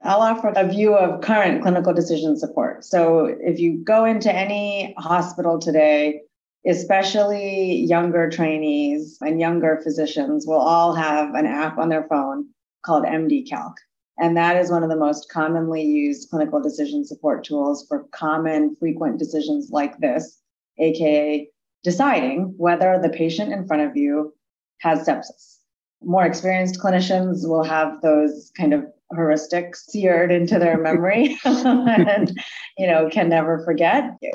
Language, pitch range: English, 155-205 Hz